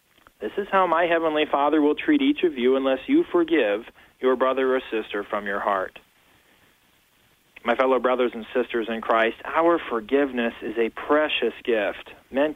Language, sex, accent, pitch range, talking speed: English, male, American, 125-170 Hz, 165 wpm